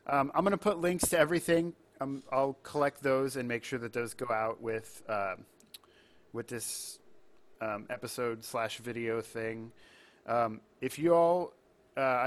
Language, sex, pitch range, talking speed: English, male, 120-145 Hz, 160 wpm